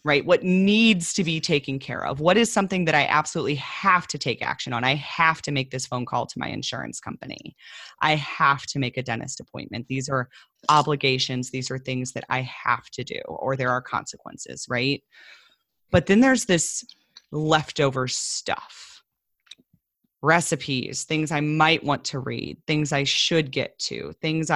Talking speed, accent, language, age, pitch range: 175 wpm, American, English, 30-49, 135-170 Hz